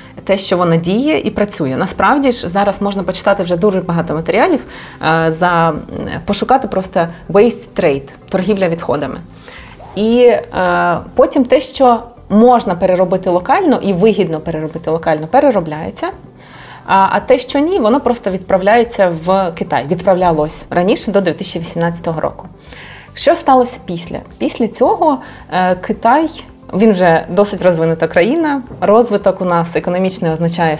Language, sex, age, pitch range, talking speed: Ukrainian, female, 30-49, 170-220 Hz, 125 wpm